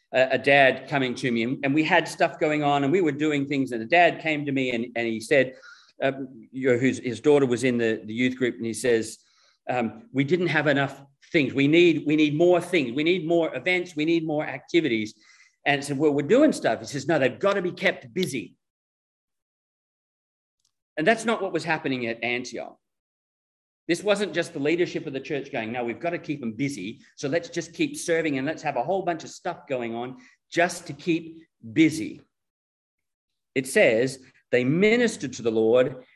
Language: English